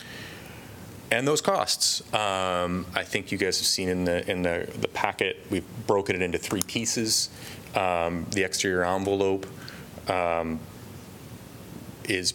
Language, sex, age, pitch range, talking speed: English, male, 30-49, 90-110 Hz, 135 wpm